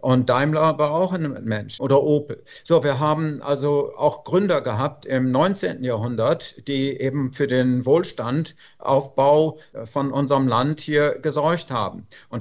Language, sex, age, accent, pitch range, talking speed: German, male, 50-69, German, 130-150 Hz, 150 wpm